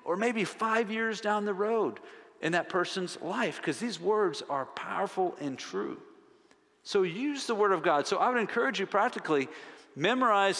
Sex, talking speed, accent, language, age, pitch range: male, 175 wpm, American, English, 50-69, 125-205 Hz